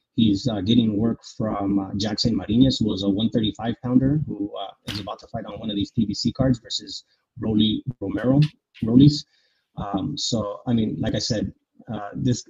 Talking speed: 185 wpm